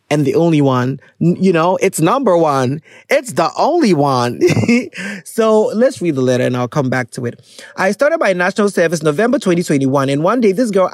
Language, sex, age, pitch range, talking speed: English, male, 30-49, 170-265 Hz, 195 wpm